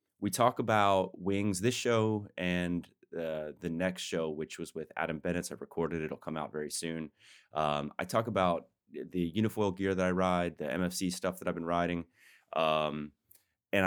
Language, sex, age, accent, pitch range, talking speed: English, male, 30-49, American, 80-90 Hz, 185 wpm